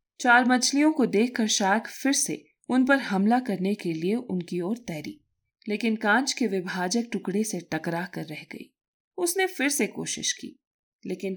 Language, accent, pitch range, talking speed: Hindi, native, 180-245 Hz, 170 wpm